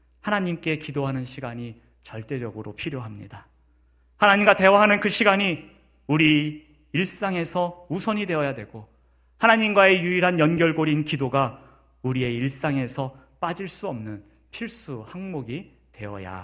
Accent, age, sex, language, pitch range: native, 40-59, male, Korean, 105-160 Hz